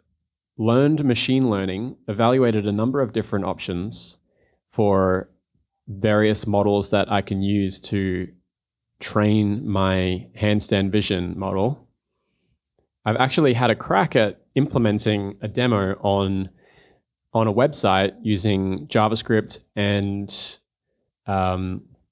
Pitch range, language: 100-115 Hz, English